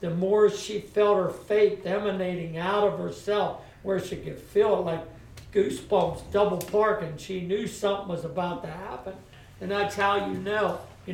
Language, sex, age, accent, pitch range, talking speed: English, male, 60-79, American, 185-215 Hz, 170 wpm